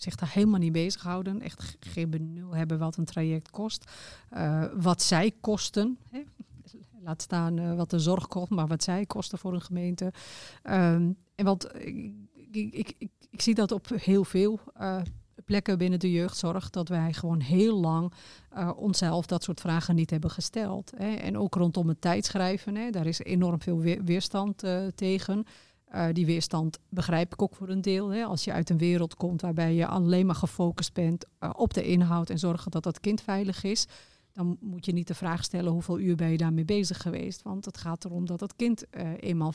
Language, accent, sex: Dutch, Dutch, female